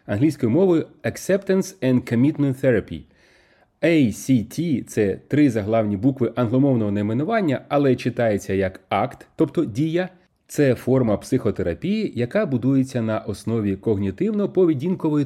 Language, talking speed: Ukrainian, 105 wpm